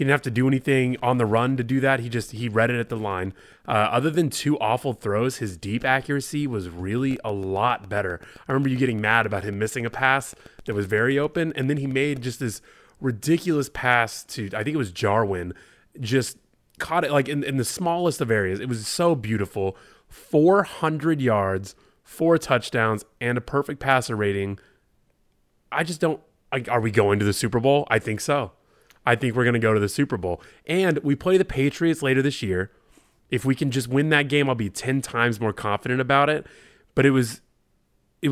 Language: English